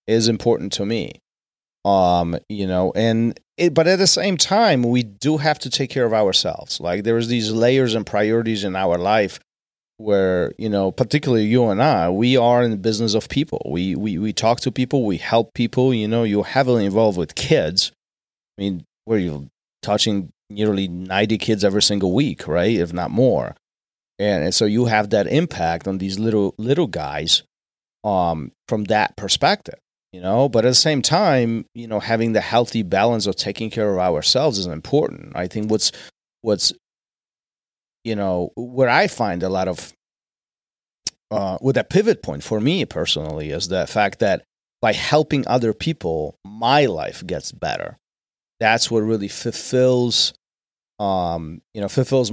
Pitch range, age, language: 95-120 Hz, 30-49, English